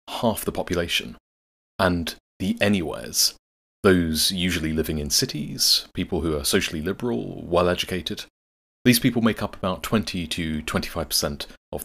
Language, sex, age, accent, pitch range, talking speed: English, male, 30-49, British, 75-100 Hz, 125 wpm